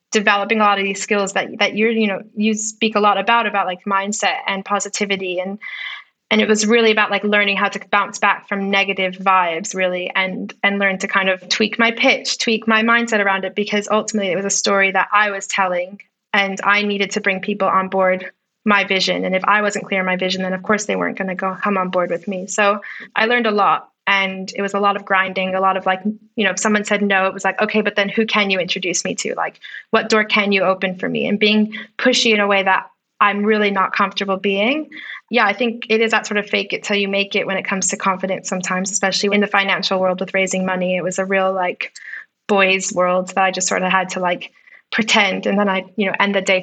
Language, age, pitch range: English, 20-39, 190-210 Hz